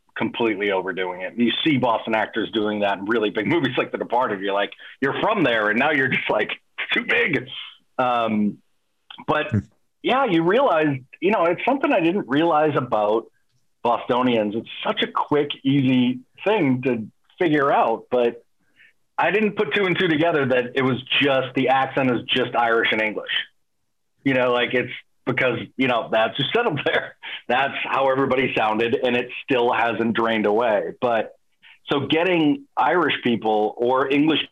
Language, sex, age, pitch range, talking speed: English, male, 40-59, 110-135 Hz, 170 wpm